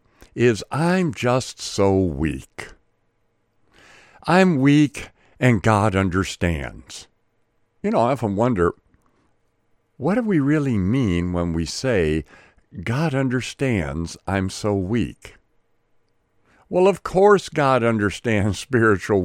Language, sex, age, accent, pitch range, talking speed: English, male, 60-79, American, 100-150 Hz, 105 wpm